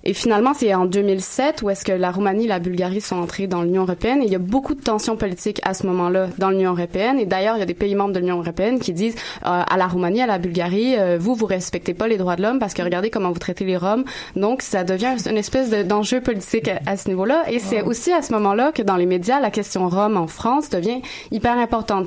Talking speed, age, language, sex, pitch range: 265 wpm, 20-39, French, female, 180-225 Hz